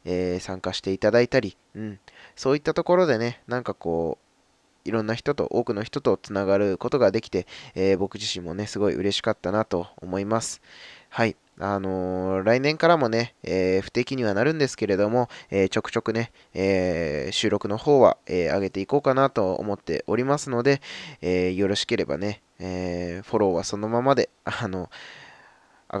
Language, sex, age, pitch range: Japanese, male, 20-39, 95-120 Hz